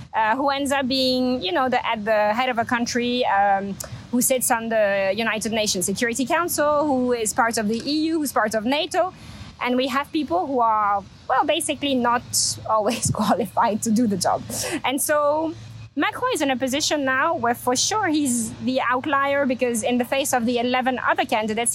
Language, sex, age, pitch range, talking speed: English, female, 20-39, 210-260 Hz, 195 wpm